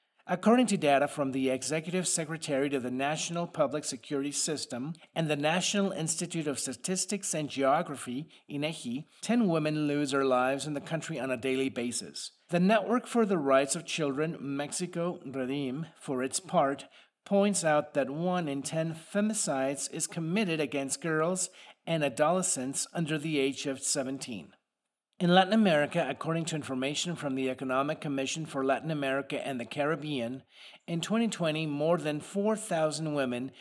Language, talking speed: English, 155 wpm